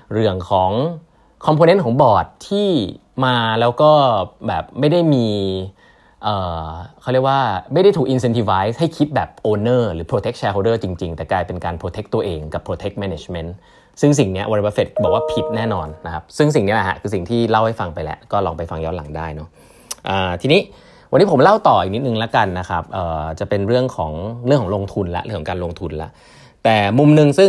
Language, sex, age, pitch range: Thai, male, 20-39, 95-145 Hz